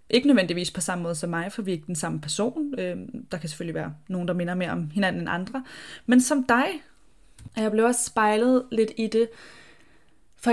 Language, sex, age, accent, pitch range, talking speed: Danish, female, 20-39, native, 175-215 Hz, 210 wpm